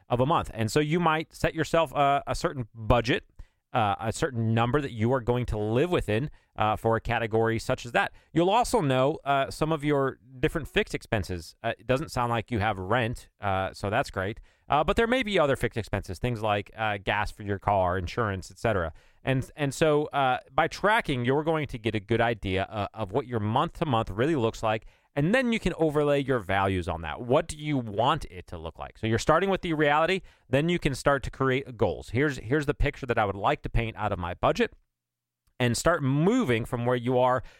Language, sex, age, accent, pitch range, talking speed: English, male, 30-49, American, 110-145 Hz, 230 wpm